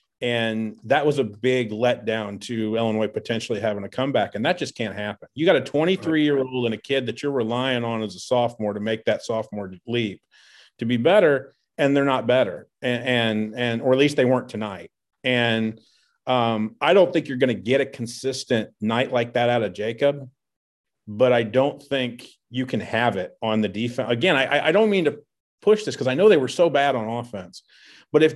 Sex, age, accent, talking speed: male, 40-59, American, 210 wpm